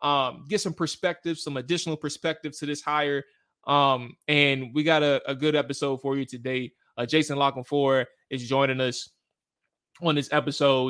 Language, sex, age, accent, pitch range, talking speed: English, male, 20-39, American, 130-150 Hz, 170 wpm